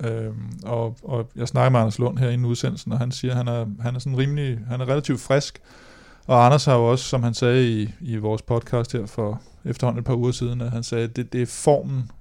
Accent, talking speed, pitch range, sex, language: native, 245 wpm, 110-125 Hz, male, Danish